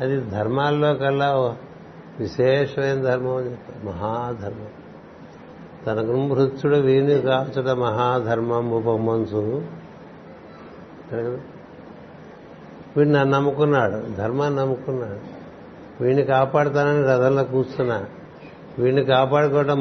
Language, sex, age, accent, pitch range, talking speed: Telugu, male, 60-79, native, 120-140 Hz, 80 wpm